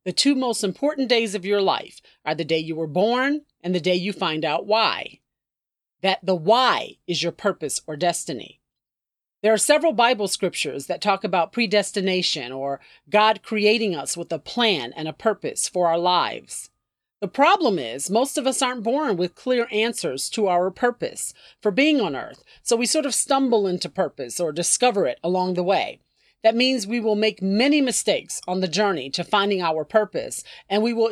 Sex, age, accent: female, 40-59, American